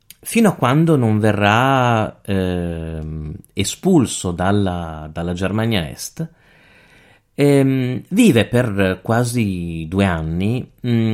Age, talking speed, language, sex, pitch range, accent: 30-49, 90 wpm, Italian, male, 90-125 Hz, native